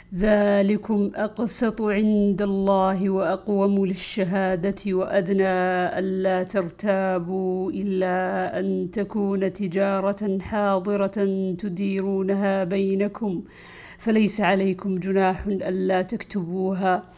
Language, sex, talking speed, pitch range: Arabic, female, 75 wpm, 190-205 Hz